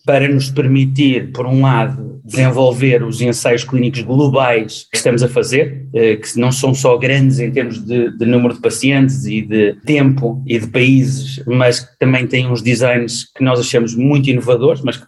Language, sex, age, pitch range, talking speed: Portuguese, male, 30-49, 120-135 Hz, 185 wpm